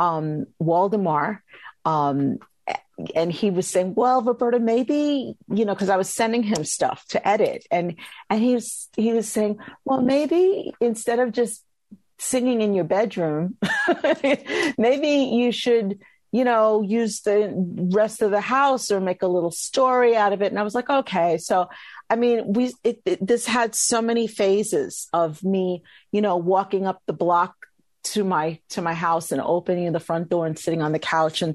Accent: American